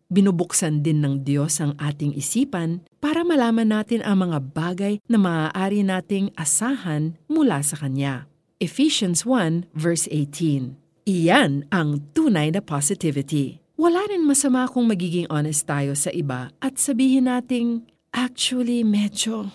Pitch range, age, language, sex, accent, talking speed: 155-215 Hz, 40-59, Filipino, female, native, 130 wpm